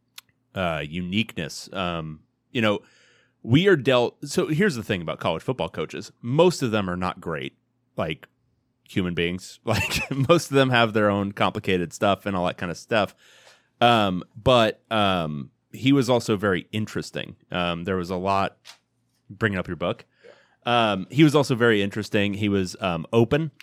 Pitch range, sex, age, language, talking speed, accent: 90-110 Hz, male, 30-49, English, 170 wpm, American